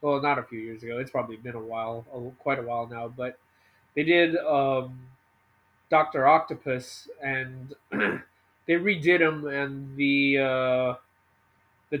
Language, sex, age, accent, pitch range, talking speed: English, male, 20-39, American, 110-160 Hz, 150 wpm